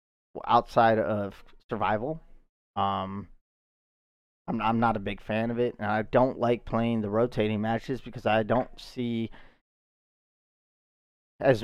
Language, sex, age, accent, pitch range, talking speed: English, male, 30-49, American, 100-115 Hz, 130 wpm